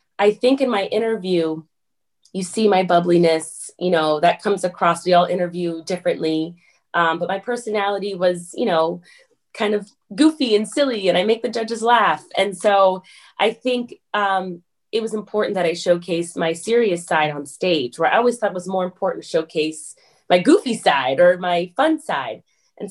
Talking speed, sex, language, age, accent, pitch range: 185 wpm, female, English, 20-39, American, 170-210 Hz